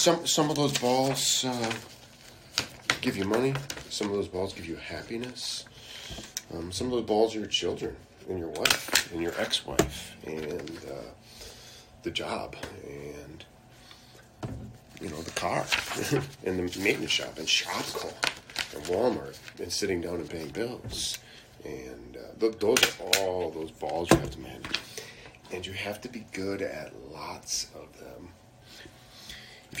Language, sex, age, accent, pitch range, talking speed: English, male, 40-59, American, 95-135 Hz, 155 wpm